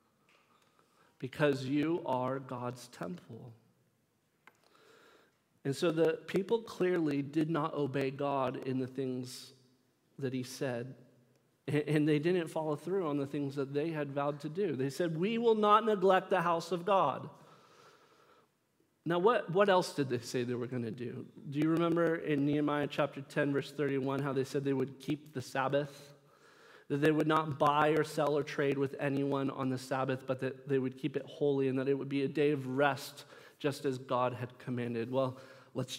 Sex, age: male, 40-59